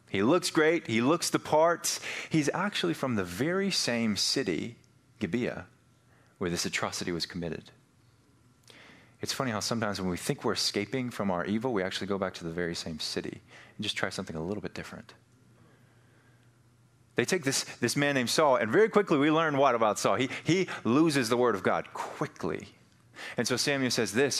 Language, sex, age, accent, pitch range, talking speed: English, male, 30-49, American, 100-125 Hz, 190 wpm